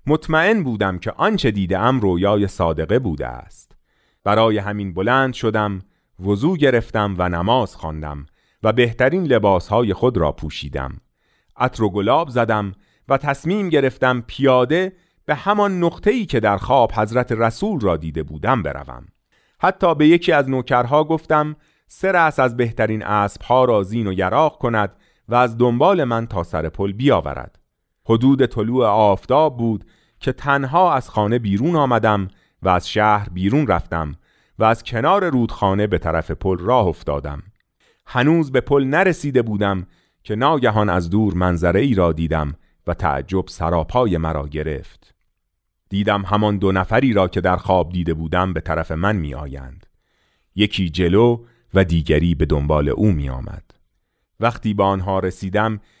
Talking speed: 145 wpm